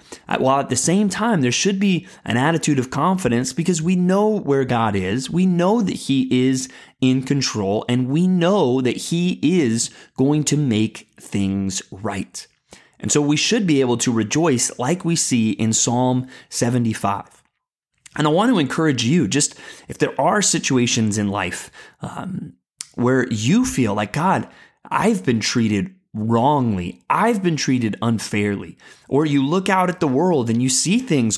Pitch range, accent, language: 115-175 Hz, American, English